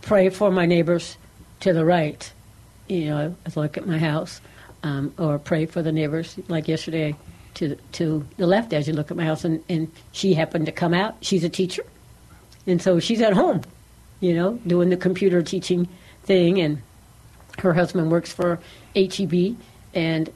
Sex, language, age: female, English, 60-79